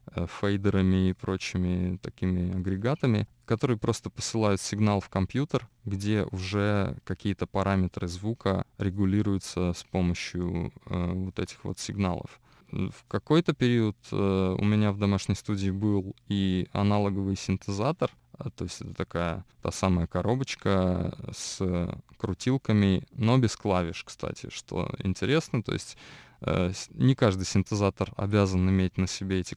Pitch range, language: 95-110 Hz, Russian